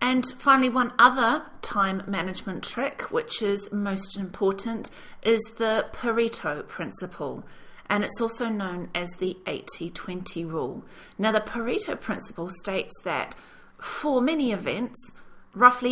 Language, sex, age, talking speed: English, female, 40-59, 125 wpm